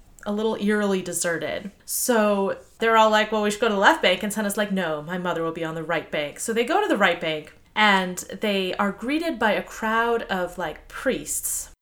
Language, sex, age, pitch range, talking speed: English, female, 30-49, 180-230 Hz, 230 wpm